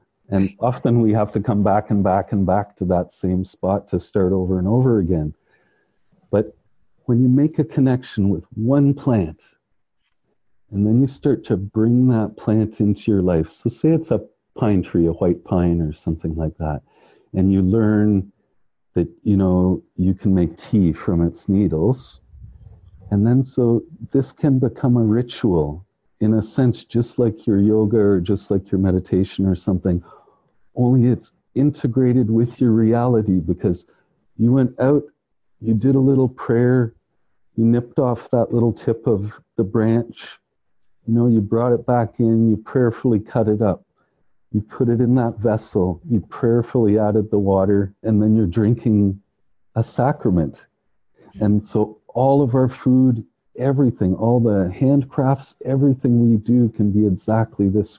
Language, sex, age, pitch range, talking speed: English, male, 50-69, 100-120 Hz, 165 wpm